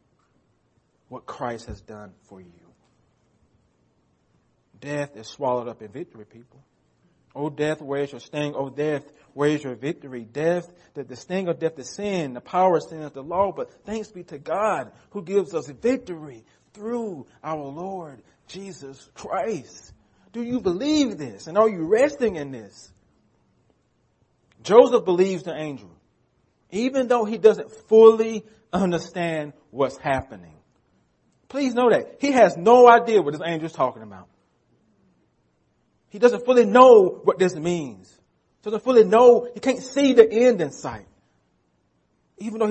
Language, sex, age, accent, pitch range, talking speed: English, male, 40-59, American, 135-210 Hz, 155 wpm